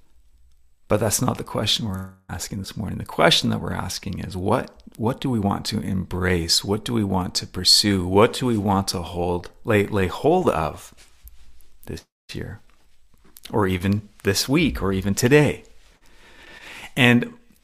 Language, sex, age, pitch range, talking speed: English, male, 40-59, 90-110 Hz, 165 wpm